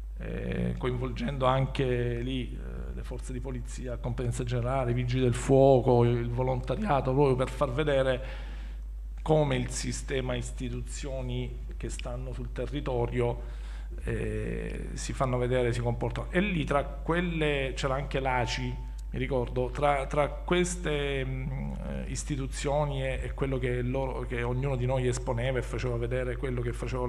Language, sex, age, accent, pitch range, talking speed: Italian, male, 40-59, native, 120-145 Hz, 145 wpm